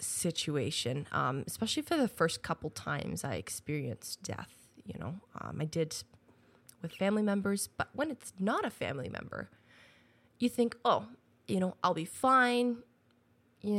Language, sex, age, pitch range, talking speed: English, female, 20-39, 155-225 Hz, 150 wpm